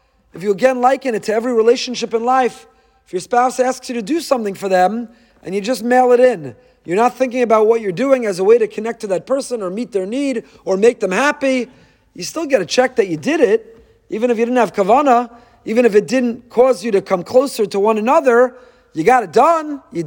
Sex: male